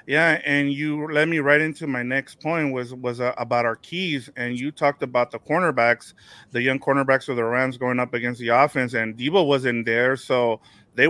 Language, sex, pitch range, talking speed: English, male, 125-145 Hz, 210 wpm